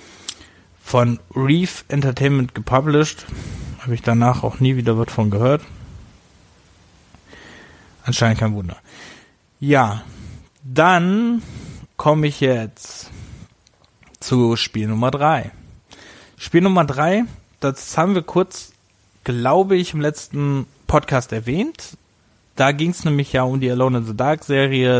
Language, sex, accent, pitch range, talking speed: German, male, German, 115-145 Hz, 120 wpm